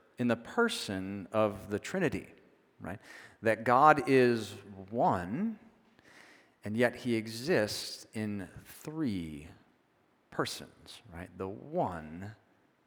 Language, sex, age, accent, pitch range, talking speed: English, male, 40-59, American, 110-155 Hz, 100 wpm